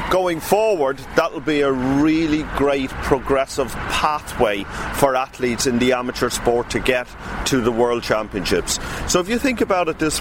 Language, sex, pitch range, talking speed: English, male, 120-155 Hz, 170 wpm